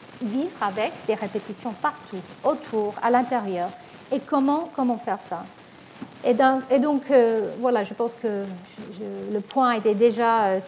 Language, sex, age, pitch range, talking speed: French, female, 50-69, 210-265 Hz, 165 wpm